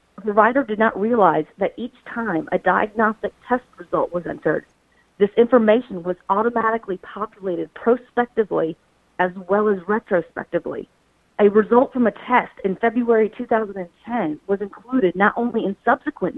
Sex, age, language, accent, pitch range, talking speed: female, 40-59, English, American, 185-230 Hz, 140 wpm